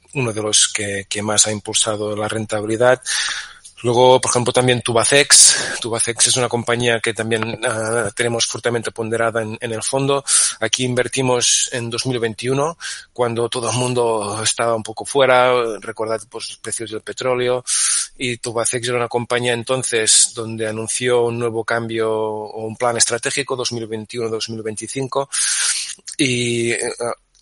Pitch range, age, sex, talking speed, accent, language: 110-125 Hz, 20-39, male, 140 wpm, Spanish, Spanish